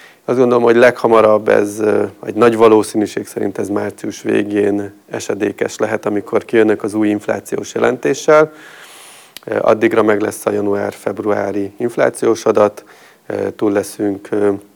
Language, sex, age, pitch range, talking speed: Hungarian, male, 30-49, 105-115 Hz, 120 wpm